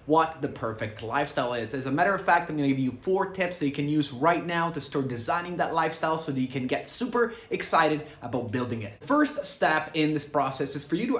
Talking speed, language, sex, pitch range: 245 wpm, English, male, 140-180 Hz